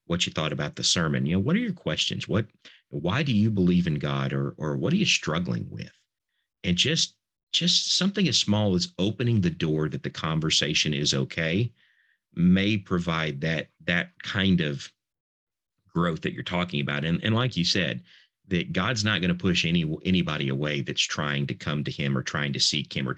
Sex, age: male, 50-69